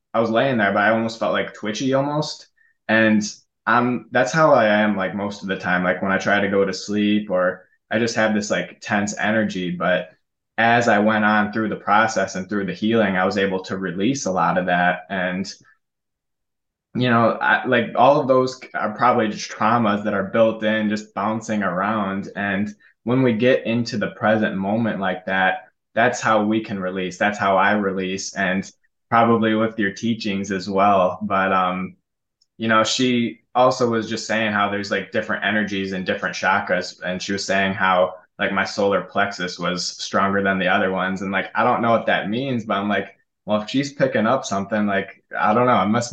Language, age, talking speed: English, 20-39, 205 wpm